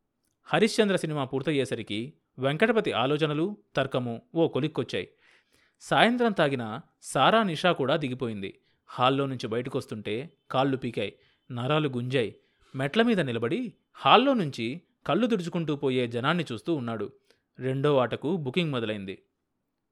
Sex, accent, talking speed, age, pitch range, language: male, native, 110 wpm, 30-49, 120-160 Hz, Telugu